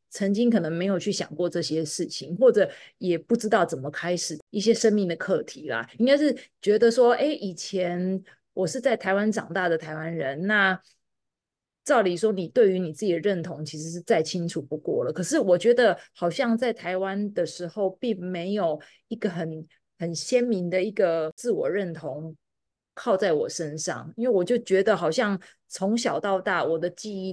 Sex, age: female, 30-49